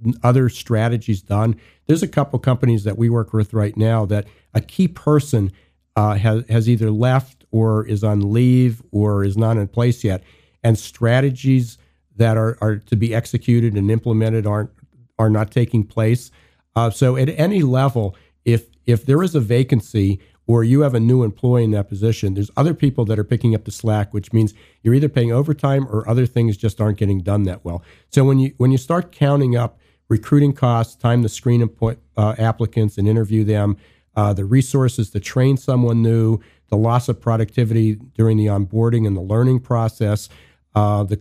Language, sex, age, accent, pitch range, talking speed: English, male, 50-69, American, 105-120 Hz, 190 wpm